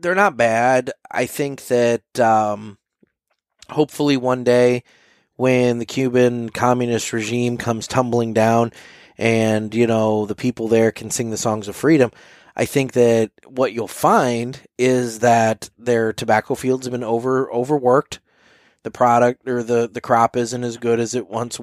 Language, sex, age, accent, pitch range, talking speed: English, male, 20-39, American, 110-125 Hz, 160 wpm